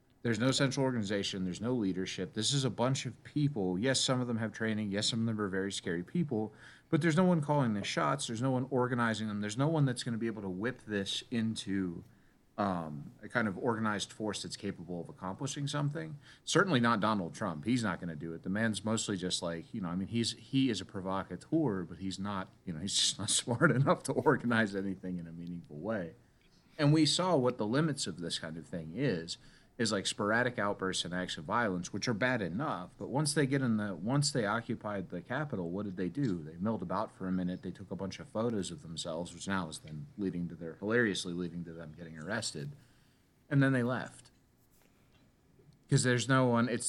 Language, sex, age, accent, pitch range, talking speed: English, male, 30-49, American, 95-125 Hz, 230 wpm